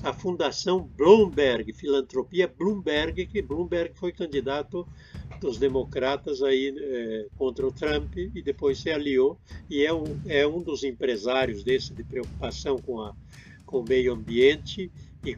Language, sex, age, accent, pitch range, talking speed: Portuguese, male, 60-79, Brazilian, 130-195 Hz, 145 wpm